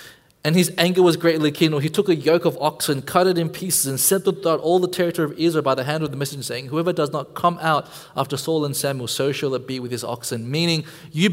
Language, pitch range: English, 135-195 Hz